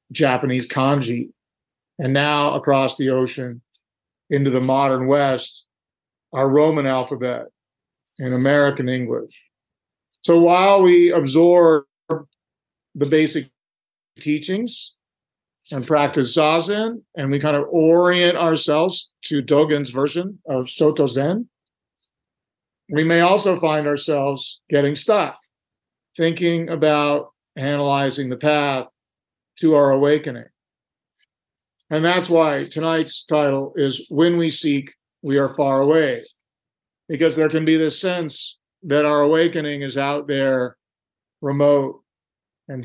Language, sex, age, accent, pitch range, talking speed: English, male, 50-69, American, 135-165 Hz, 115 wpm